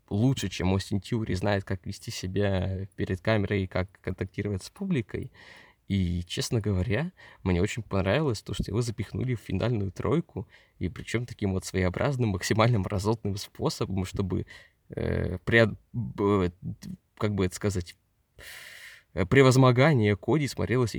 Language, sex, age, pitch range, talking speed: Russian, male, 20-39, 95-115 Hz, 130 wpm